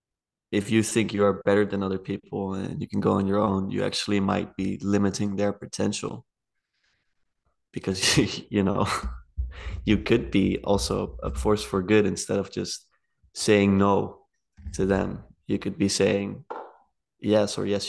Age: 20-39